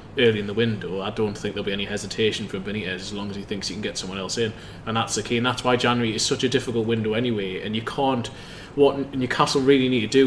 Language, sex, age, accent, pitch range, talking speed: English, male, 20-39, British, 105-120 Hz, 275 wpm